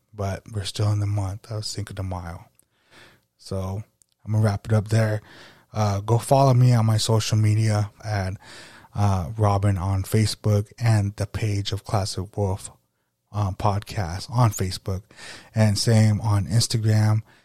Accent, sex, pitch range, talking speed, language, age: American, male, 100-115 Hz, 160 wpm, English, 20-39